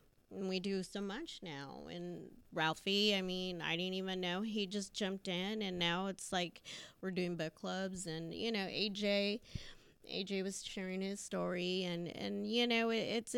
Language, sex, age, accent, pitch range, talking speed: English, female, 30-49, American, 175-205 Hz, 185 wpm